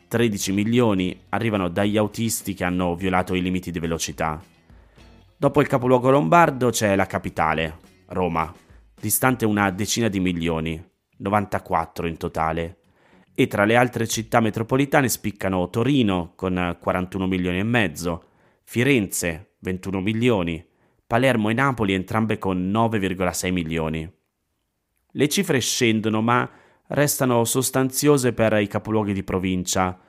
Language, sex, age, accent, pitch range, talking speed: Italian, male, 30-49, native, 90-115 Hz, 125 wpm